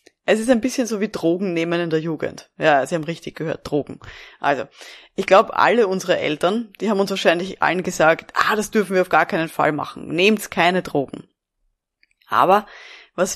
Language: German